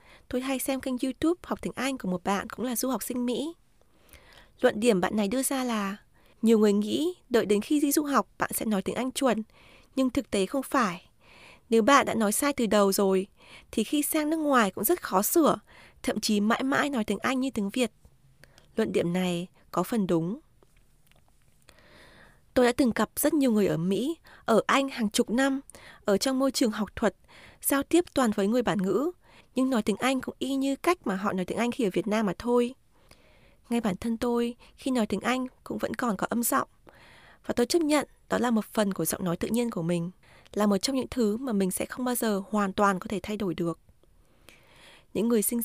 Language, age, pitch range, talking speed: Vietnamese, 20-39, 200-265 Hz, 225 wpm